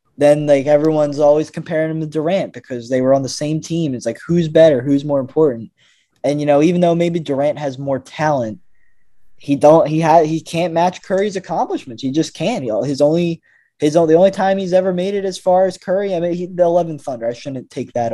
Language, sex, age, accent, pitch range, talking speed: English, male, 20-39, American, 130-165 Hz, 230 wpm